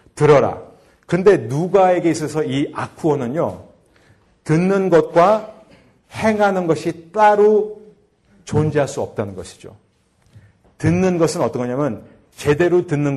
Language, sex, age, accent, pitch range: Korean, male, 40-59, native, 125-165 Hz